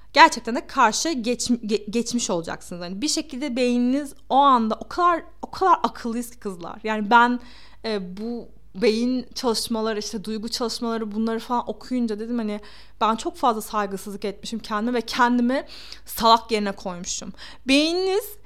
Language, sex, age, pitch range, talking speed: Turkish, female, 30-49, 215-270 Hz, 145 wpm